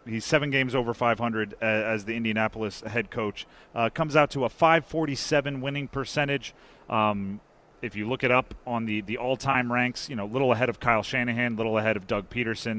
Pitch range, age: 110-150 Hz, 30-49